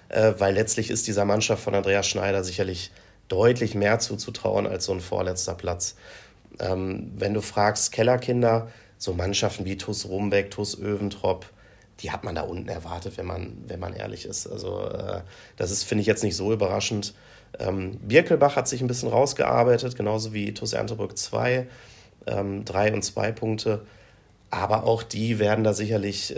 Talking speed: 170 wpm